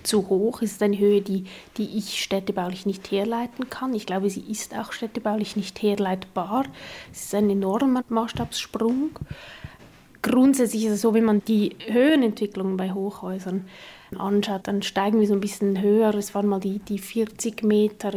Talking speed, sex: 170 wpm, female